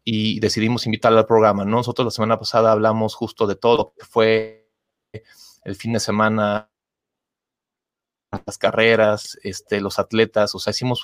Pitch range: 105-120 Hz